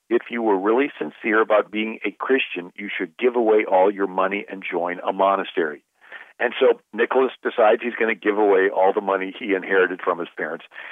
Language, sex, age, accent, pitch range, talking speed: English, male, 50-69, American, 105-135 Hz, 205 wpm